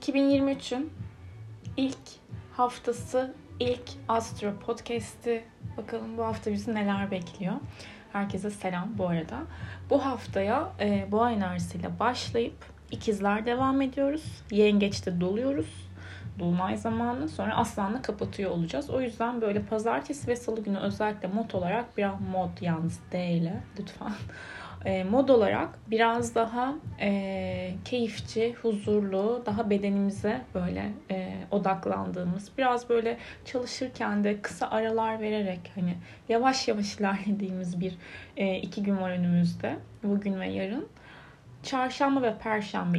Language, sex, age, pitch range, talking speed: Turkish, female, 10-29, 185-235 Hz, 120 wpm